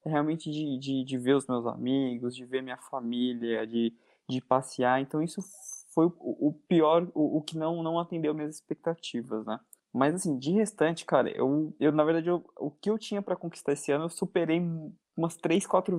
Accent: Brazilian